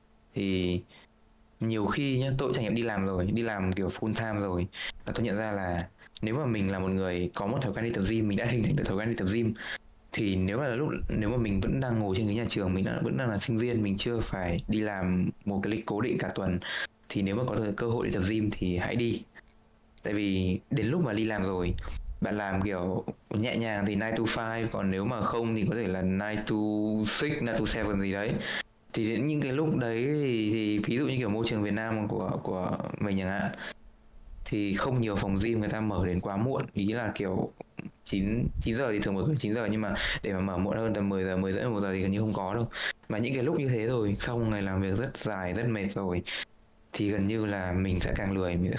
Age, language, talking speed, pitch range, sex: 20-39, Vietnamese, 265 wpm, 95-110 Hz, male